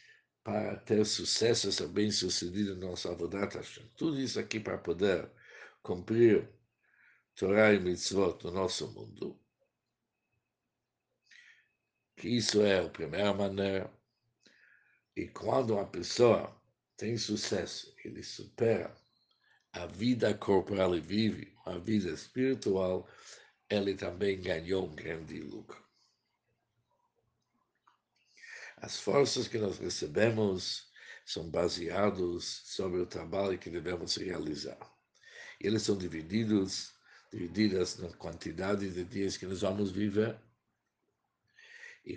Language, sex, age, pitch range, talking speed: Portuguese, male, 60-79, 95-110 Hz, 110 wpm